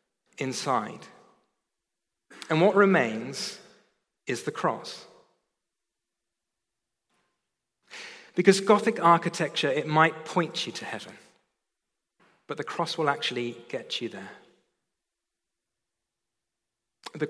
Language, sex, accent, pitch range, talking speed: English, male, British, 125-155 Hz, 85 wpm